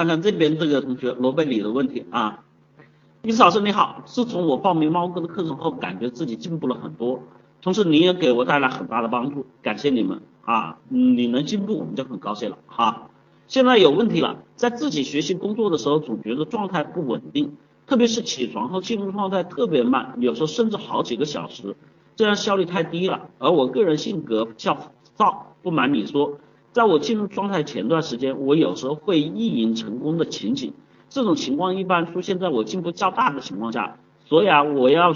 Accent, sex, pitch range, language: native, male, 140-220 Hz, Chinese